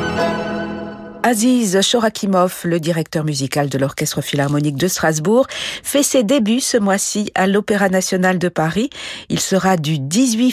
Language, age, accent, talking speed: French, 50-69, French, 135 wpm